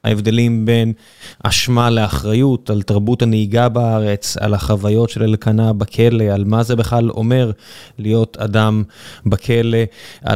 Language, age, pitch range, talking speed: Hebrew, 20-39, 110-120 Hz, 120 wpm